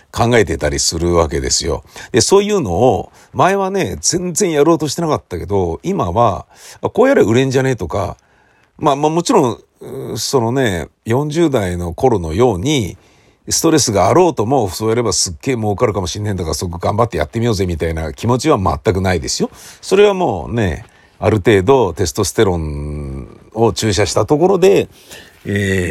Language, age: Japanese, 50-69